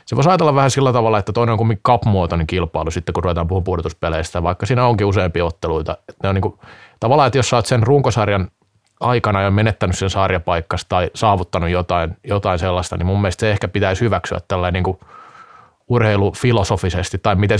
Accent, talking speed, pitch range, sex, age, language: native, 175 wpm, 90-115 Hz, male, 30-49, Finnish